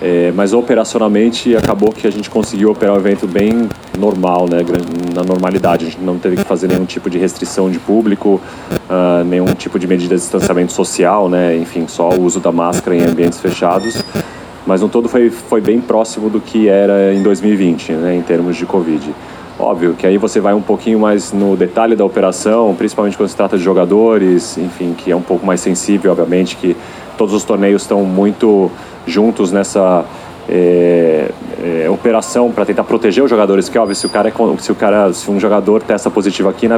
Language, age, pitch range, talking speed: Portuguese, 30-49, 90-110 Hz, 195 wpm